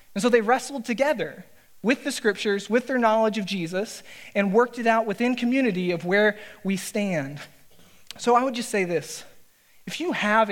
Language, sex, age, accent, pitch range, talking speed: English, male, 20-39, American, 185-220 Hz, 185 wpm